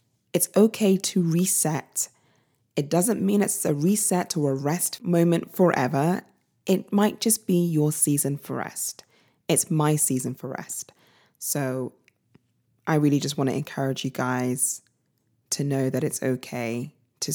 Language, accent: English, British